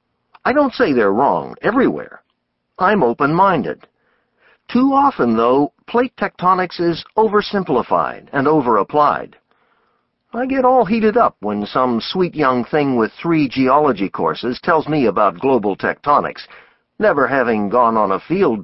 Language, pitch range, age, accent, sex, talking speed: English, 125-195 Hz, 50-69, American, male, 135 wpm